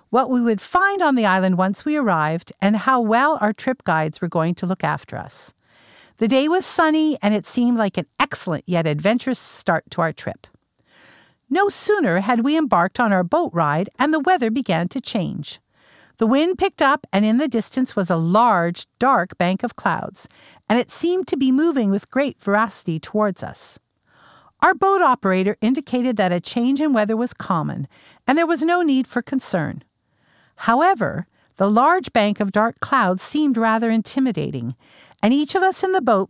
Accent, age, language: American, 50-69, English